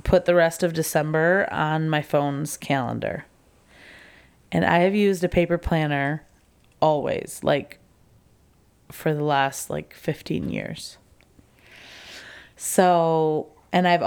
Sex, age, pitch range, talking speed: female, 20-39, 155-200 Hz, 115 wpm